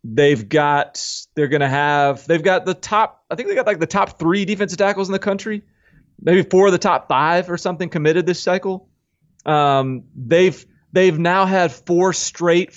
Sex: male